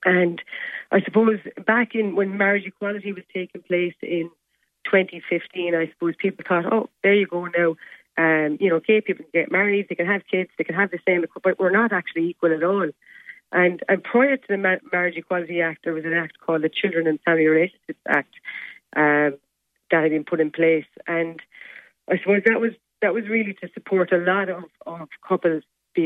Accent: Irish